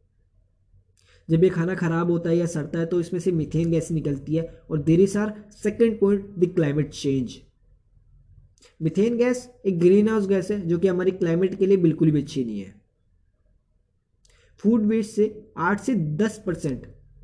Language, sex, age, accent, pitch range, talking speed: Hindi, male, 20-39, native, 125-205 Hz, 165 wpm